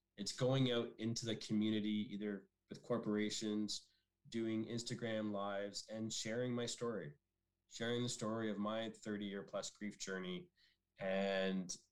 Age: 20-39